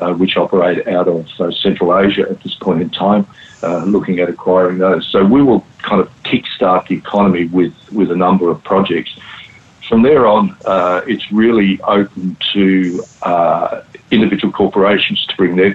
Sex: male